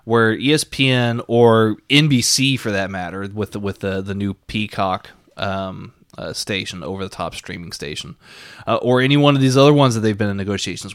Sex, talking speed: male, 180 wpm